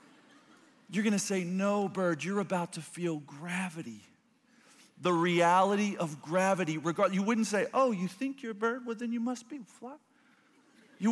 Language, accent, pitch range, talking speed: English, American, 140-230 Hz, 165 wpm